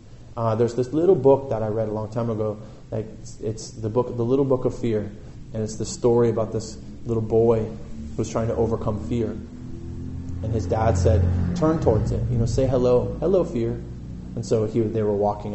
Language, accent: English, American